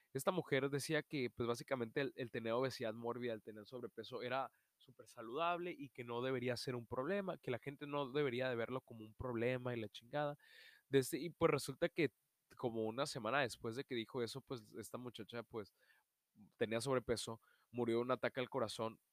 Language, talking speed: Spanish, 195 wpm